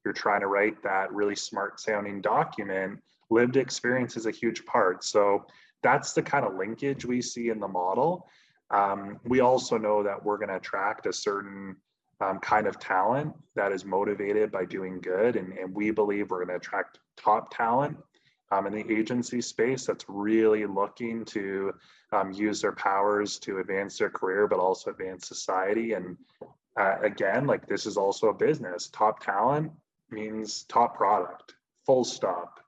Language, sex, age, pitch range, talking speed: English, male, 20-39, 100-125 Hz, 170 wpm